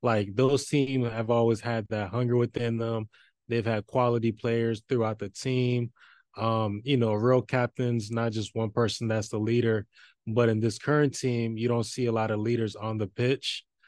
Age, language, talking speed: 20-39, English, 190 wpm